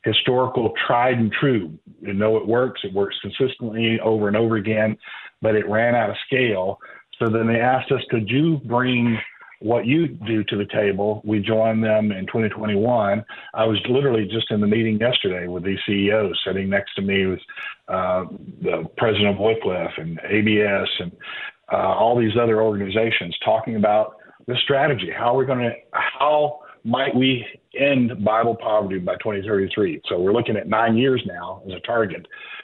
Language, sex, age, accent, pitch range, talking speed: English, male, 50-69, American, 105-120 Hz, 175 wpm